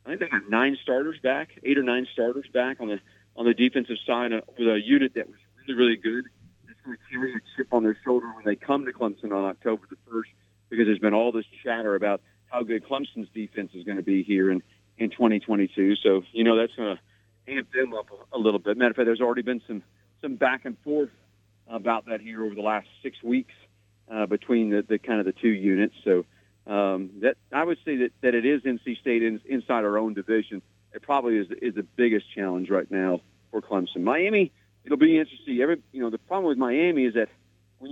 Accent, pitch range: American, 105-130 Hz